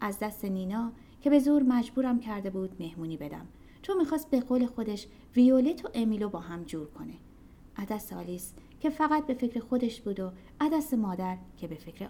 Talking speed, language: 185 wpm, Persian